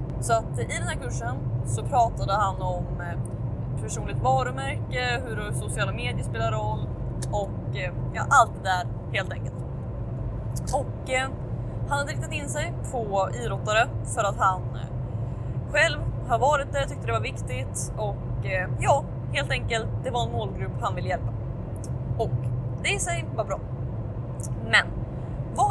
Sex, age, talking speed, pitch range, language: female, 20-39, 145 wpm, 115-125 Hz, Swedish